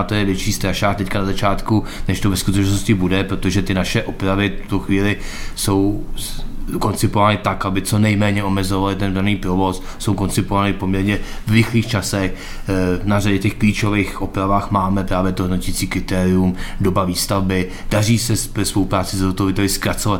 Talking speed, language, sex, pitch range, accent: 160 wpm, Czech, male, 95-100 Hz, native